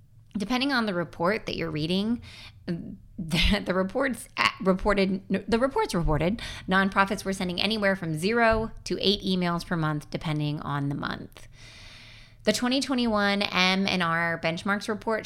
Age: 20-39